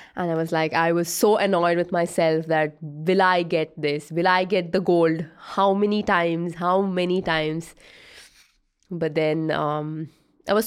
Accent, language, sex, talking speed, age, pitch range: Indian, English, female, 175 wpm, 20-39, 165-210 Hz